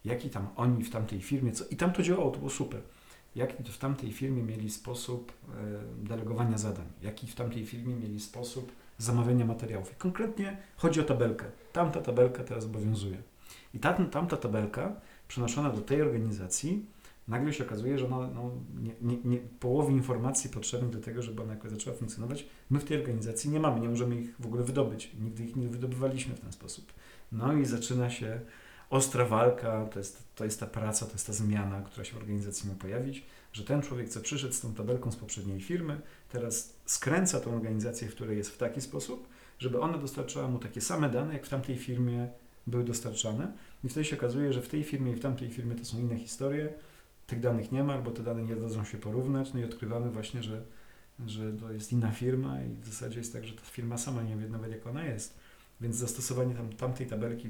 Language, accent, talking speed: Polish, native, 205 wpm